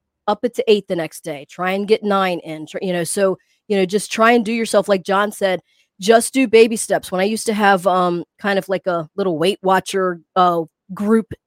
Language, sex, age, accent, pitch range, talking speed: English, female, 30-49, American, 185-215 Hz, 235 wpm